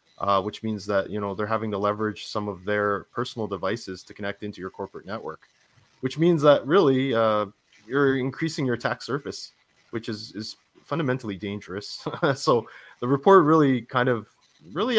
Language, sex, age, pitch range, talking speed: English, male, 20-39, 100-125 Hz, 170 wpm